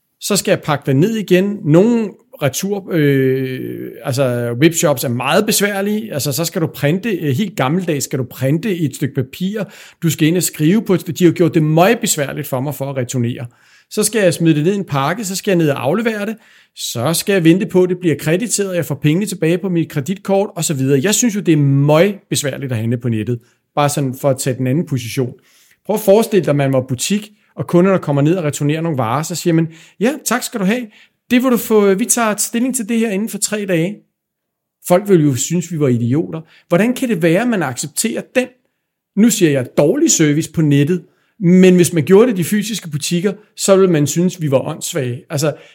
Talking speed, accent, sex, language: 230 wpm, native, male, Danish